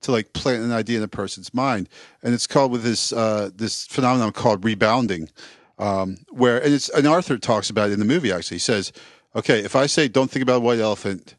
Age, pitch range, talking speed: 40-59, 100-120 Hz, 230 wpm